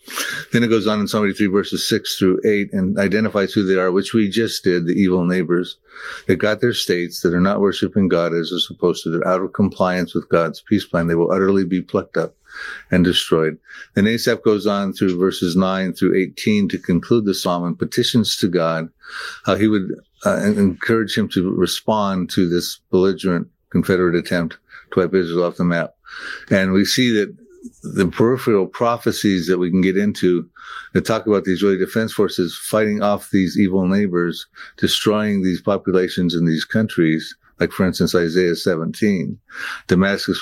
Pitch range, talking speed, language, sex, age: 90-105 Hz, 185 wpm, English, male, 50-69